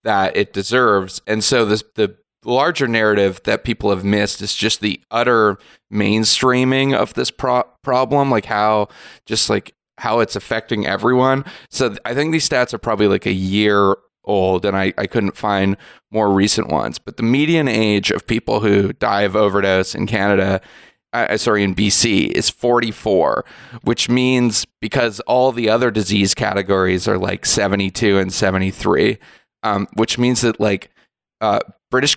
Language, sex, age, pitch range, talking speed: English, male, 20-39, 100-120 Hz, 160 wpm